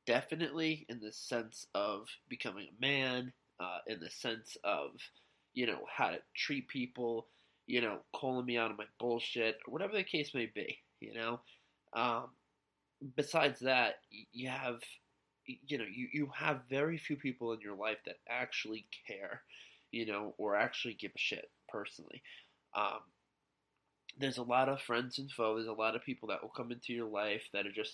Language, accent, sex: English, American, male